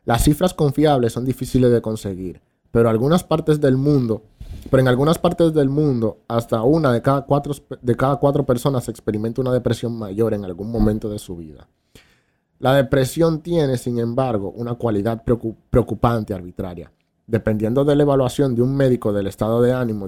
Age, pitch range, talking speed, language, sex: 30-49, 105-130 Hz, 165 wpm, Spanish, male